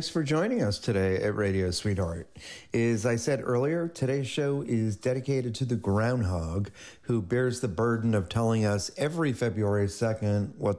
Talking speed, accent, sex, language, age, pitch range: 165 wpm, American, male, English, 40-59, 100-125 Hz